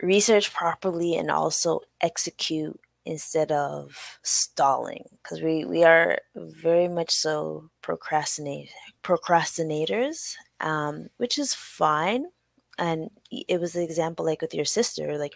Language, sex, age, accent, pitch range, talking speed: English, female, 20-39, American, 150-175 Hz, 120 wpm